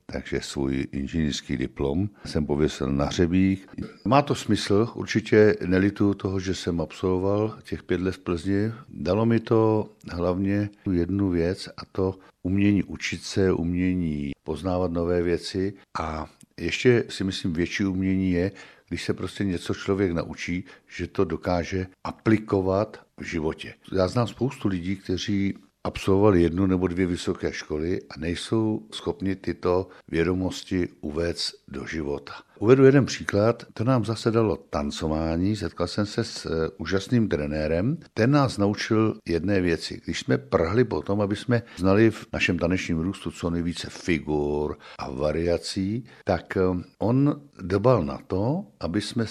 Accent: native